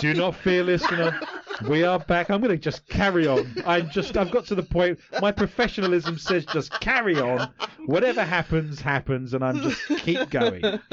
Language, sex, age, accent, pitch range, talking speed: English, male, 30-49, British, 120-180 Hz, 200 wpm